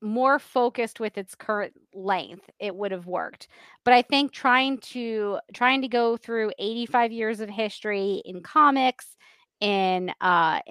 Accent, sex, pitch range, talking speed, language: American, female, 205-245 Hz, 150 wpm, English